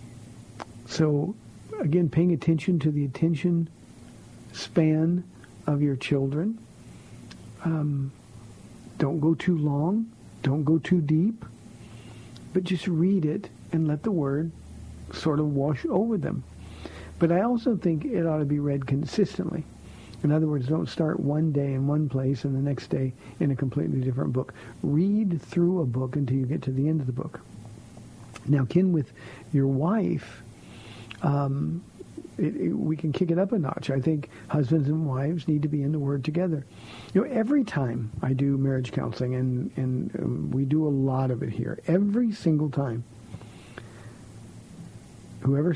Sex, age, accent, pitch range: male, 50-69, American, 125-165 Hz